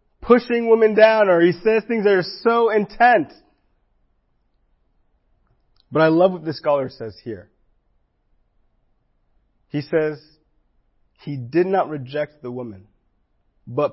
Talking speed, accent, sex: 120 wpm, American, male